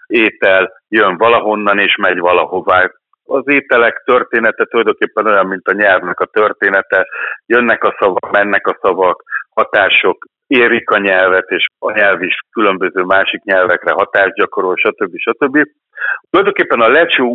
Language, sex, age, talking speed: Hungarian, male, 60-79, 140 wpm